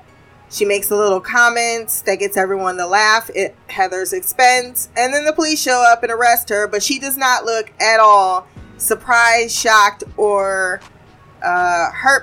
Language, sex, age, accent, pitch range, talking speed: English, female, 20-39, American, 200-275 Hz, 165 wpm